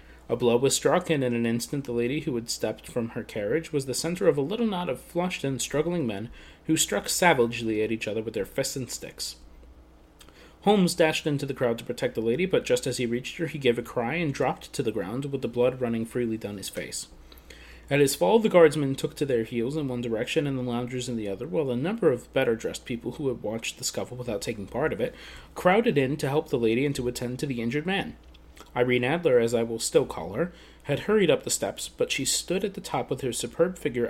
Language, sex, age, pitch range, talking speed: English, male, 30-49, 115-175 Hz, 250 wpm